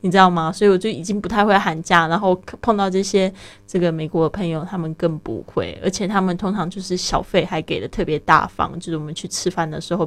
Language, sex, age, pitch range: Chinese, female, 20-39, 170-205 Hz